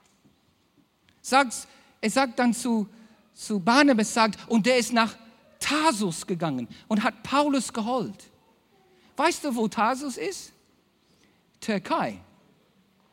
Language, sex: German, male